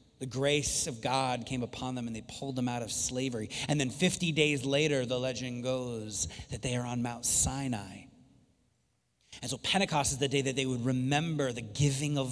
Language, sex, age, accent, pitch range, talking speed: English, male, 30-49, American, 135-185 Hz, 200 wpm